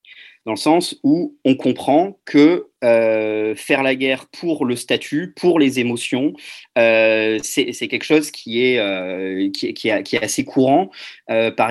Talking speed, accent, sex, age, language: 175 wpm, French, male, 30-49, French